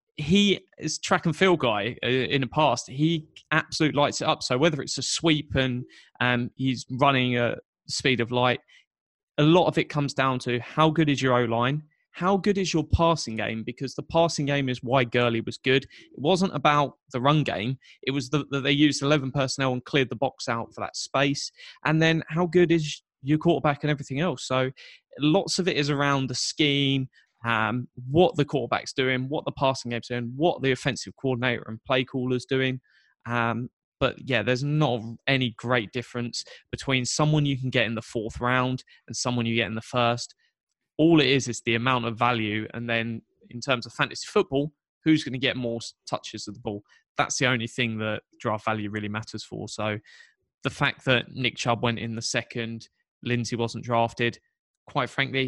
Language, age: English, 20-39